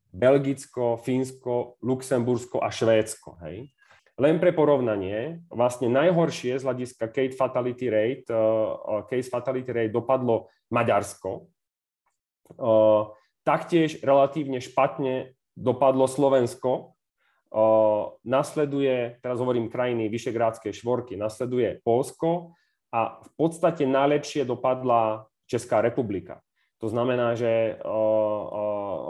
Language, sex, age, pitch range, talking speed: Slovak, male, 30-49, 110-135 Hz, 95 wpm